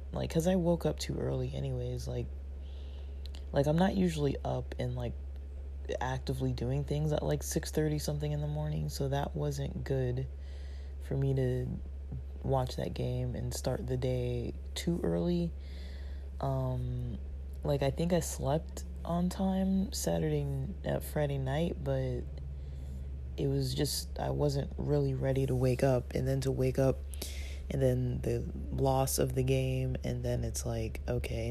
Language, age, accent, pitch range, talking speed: English, 20-39, American, 65-75 Hz, 160 wpm